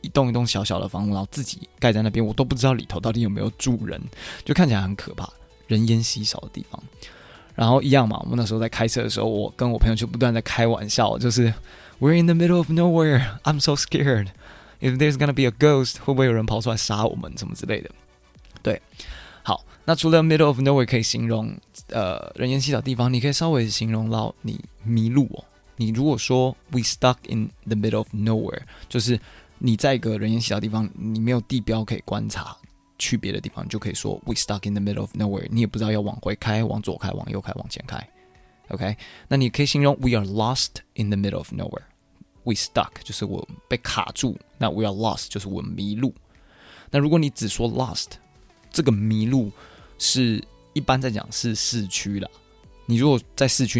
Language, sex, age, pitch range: Chinese, male, 20-39, 105-130 Hz